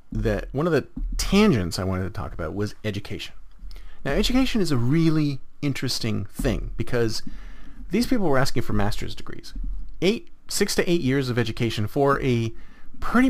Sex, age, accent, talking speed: male, 40-59, American, 165 wpm